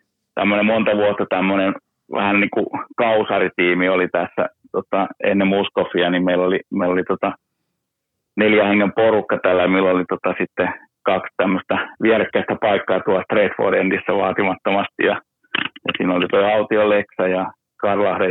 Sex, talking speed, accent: male, 145 wpm, native